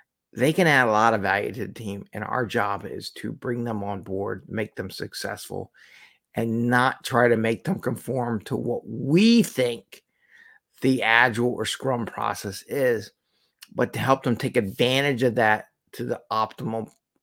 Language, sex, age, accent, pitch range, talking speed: English, male, 50-69, American, 125-165 Hz, 175 wpm